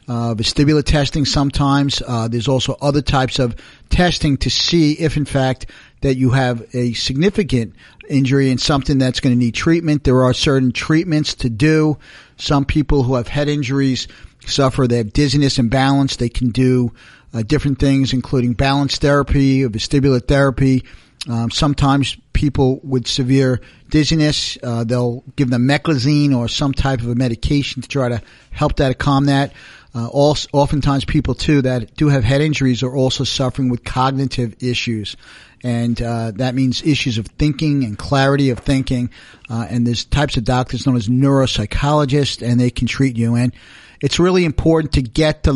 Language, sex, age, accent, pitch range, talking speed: English, male, 50-69, American, 125-140 Hz, 175 wpm